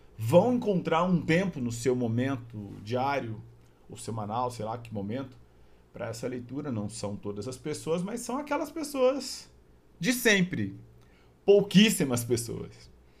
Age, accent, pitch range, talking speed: 50-69, Brazilian, 95-155 Hz, 135 wpm